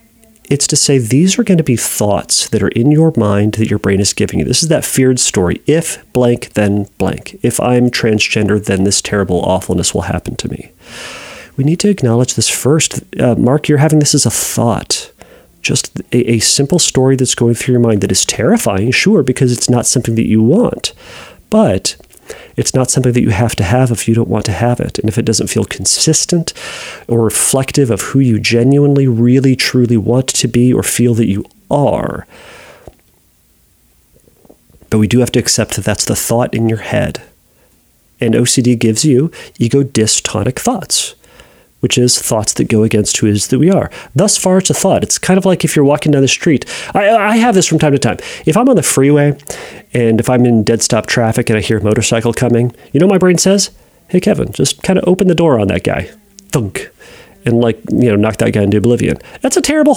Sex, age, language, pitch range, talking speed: male, 40-59, English, 115-155 Hz, 215 wpm